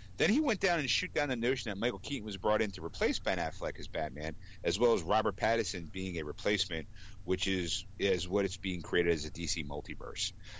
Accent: American